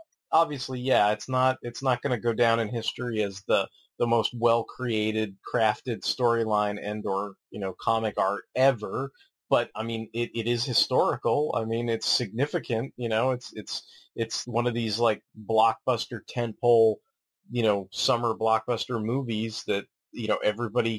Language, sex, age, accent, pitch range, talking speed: English, male, 30-49, American, 105-125 Hz, 165 wpm